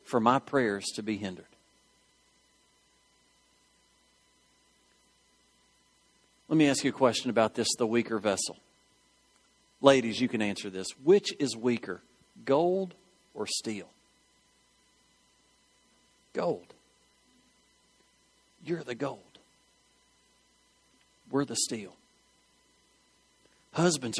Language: English